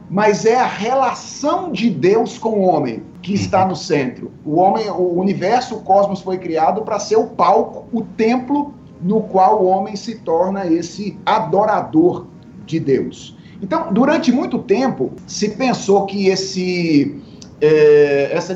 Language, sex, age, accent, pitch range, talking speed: Portuguese, male, 40-59, Brazilian, 170-225 Hz, 140 wpm